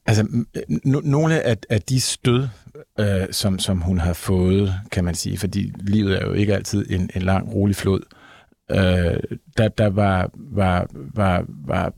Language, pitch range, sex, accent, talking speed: Danish, 95-120 Hz, male, native, 165 wpm